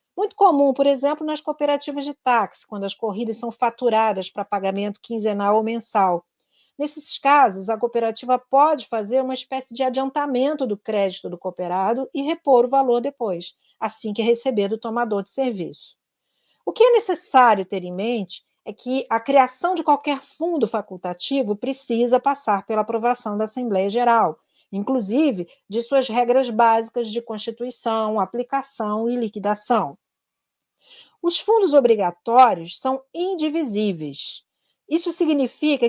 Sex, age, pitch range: female, 50-69, 215-270 Hz